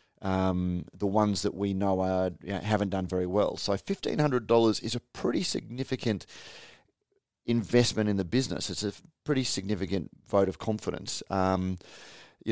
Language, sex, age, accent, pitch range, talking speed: English, male, 30-49, Australian, 95-110 Hz, 160 wpm